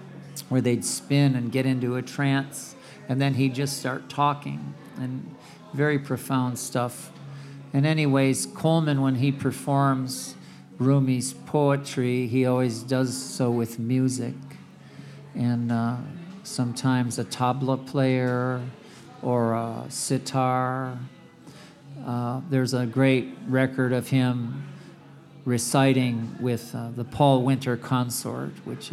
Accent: American